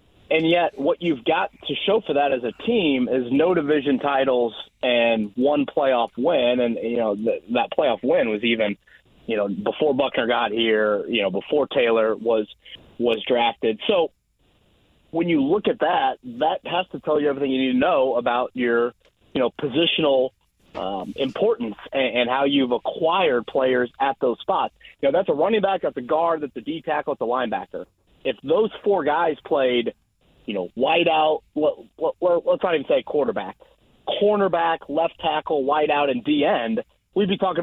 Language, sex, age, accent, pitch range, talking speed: English, male, 30-49, American, 125-180 Hz, 180 wpm